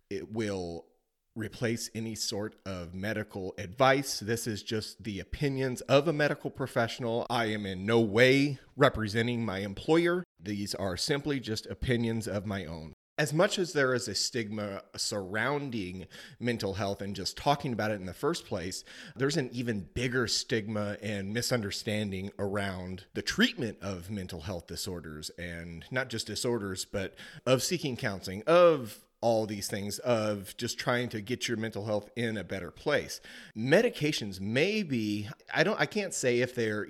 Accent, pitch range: American, 100-130 Hz